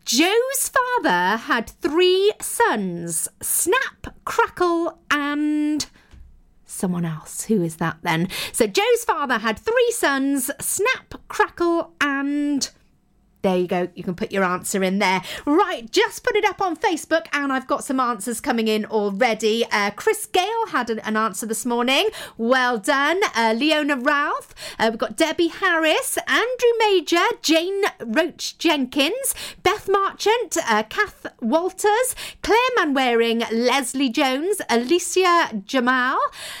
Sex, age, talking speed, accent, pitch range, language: female, 40-59, 135 wpm, British, 220-365 Hz, English